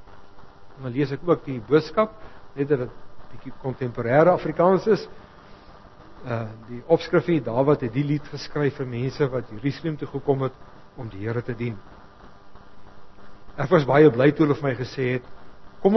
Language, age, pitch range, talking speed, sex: English, 60-79, 100-150 Hz, 165 wpm, male